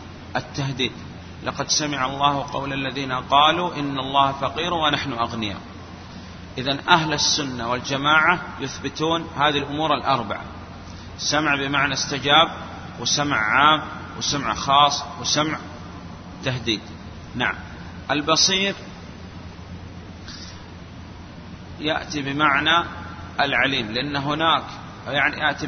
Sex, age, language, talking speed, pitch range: male, 30-49, Arabic, 90 wpm, 90-150 Hz